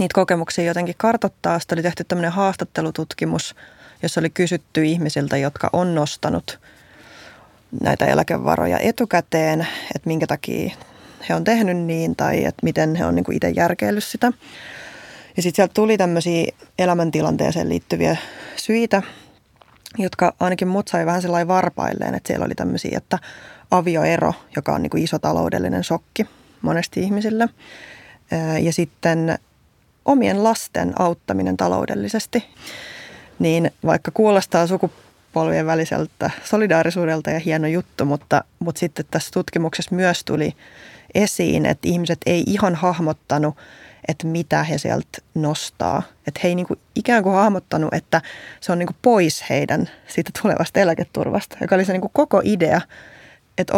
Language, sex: Finnish, female